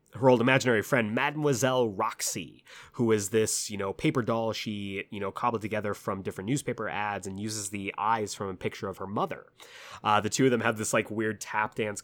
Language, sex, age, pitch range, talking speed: English, male, 20-39, 105-140 Hz, 215 wpm